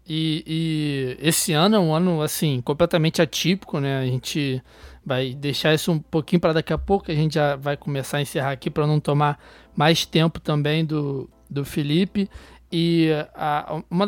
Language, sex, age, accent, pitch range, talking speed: Portuguese, male, 20-39, Brazilian, 155-185 Hz, 170 wpm